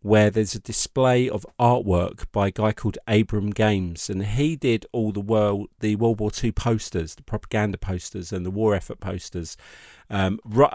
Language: English